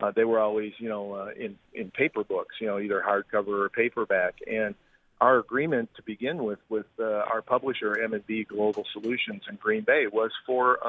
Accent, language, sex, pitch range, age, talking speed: American, English, male, 105-115 Hz, 50-69, 200 wpm